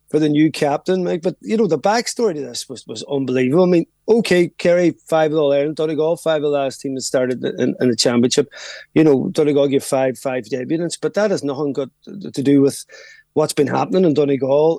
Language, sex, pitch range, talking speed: English, male, 145-180 Hz, 220 wpm